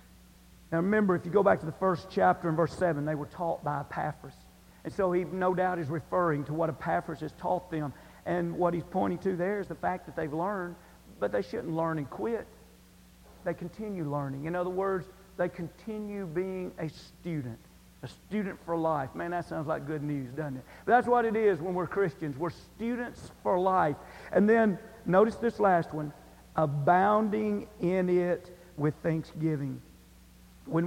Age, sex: 50-69, male